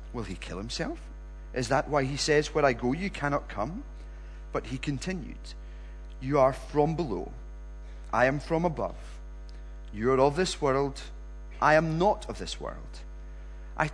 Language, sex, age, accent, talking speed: English, male, 30-49, British, 165 wpm